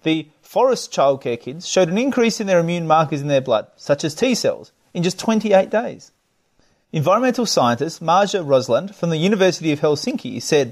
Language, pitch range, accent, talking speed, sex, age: English, 145-210 Hz, Australian, 180 wpm, male, 30-49